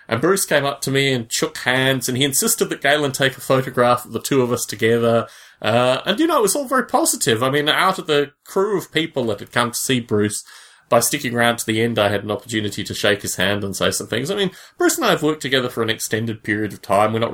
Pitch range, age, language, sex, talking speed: 105-140 Hz, 30-49, English, male, 275 wpm